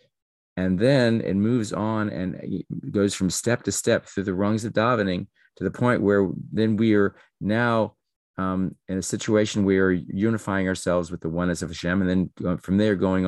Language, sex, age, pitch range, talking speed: English, male, 40-59, 90-105 Hz, 195 wpm